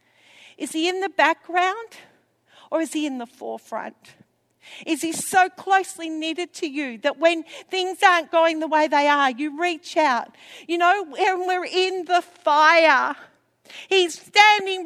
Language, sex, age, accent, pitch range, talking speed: English, female, 50-69, Australian, 265-370 Hz, 160 wpm